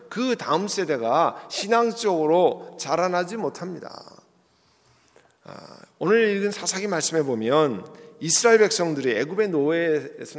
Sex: male